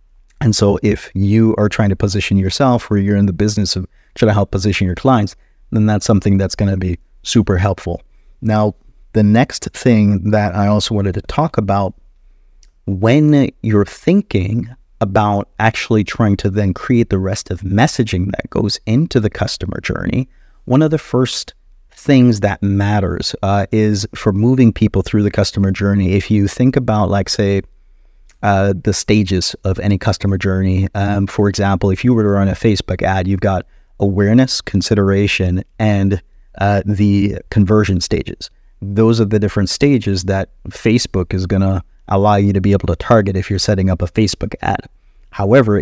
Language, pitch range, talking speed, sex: English, 95-110 Hz, 175 wpm, male